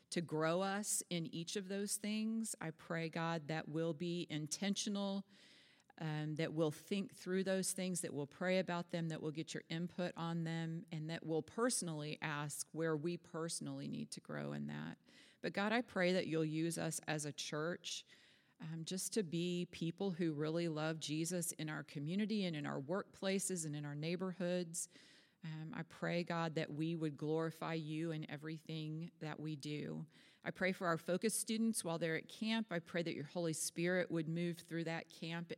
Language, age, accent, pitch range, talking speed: English, 40-59, American, 155-180 Hz, 190 wpm